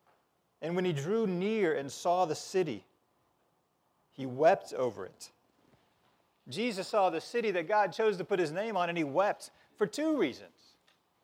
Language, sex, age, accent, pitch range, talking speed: English, male, 40-59, American, 175-220 Hz, 165 wpm